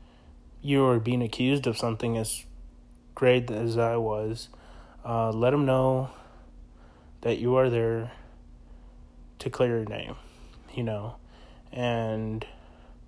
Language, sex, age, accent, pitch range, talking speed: English, male, 20-39, American, 110-130 Hz, 120 wpm